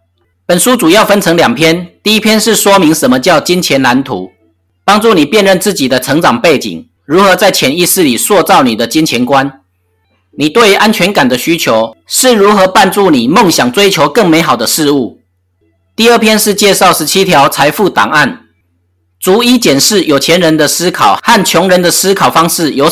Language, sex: Chinese, male